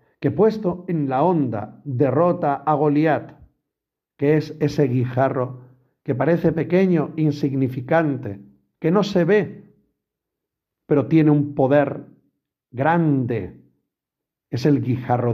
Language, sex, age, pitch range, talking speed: Spanish, male, 50-69, 130-205 Hz, 110 wpm